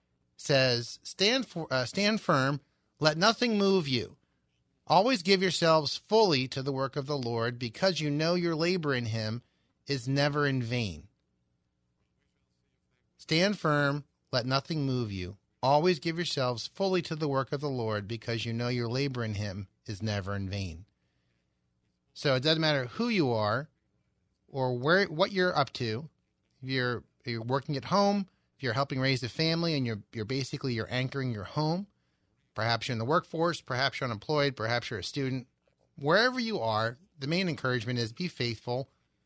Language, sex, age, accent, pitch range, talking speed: English, male, 30-49, American, 115-160 Hz, 170 wpm